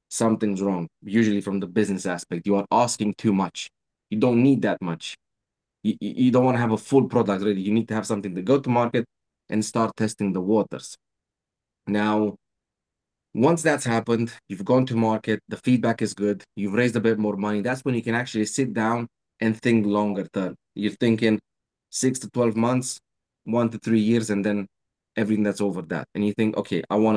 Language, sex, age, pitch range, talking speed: English, male, 20-39, 100-115 Hz, 205 wpm